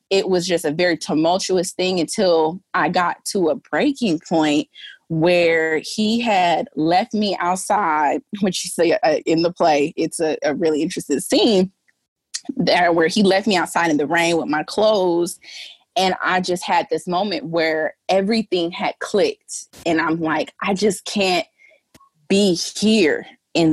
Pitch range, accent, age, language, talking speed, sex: 165-215 Hz, American, 20-39, English, 155 wpm, female